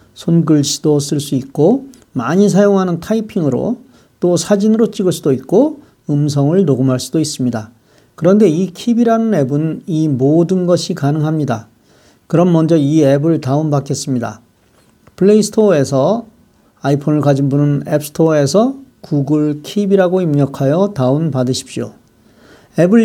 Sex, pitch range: male, 140-190 Hz